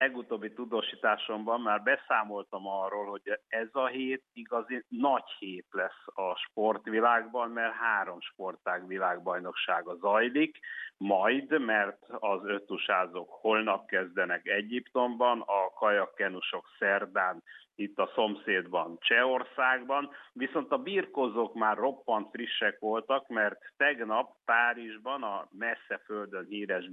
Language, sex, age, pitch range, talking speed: Hungarian, male, 60-79, 105-130 Hz, 105 wpm